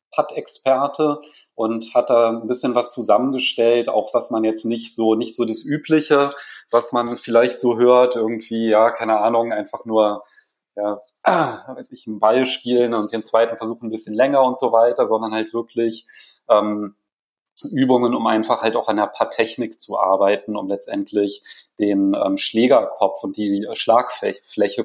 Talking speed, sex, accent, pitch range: 165 wpm, male, German, 110-125 Hz